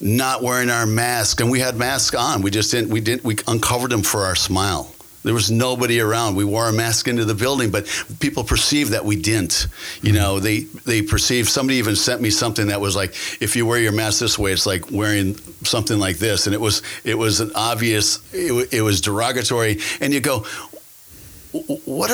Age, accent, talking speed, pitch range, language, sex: 50-69, American, 210 wpm, 105-135 Hz, English, male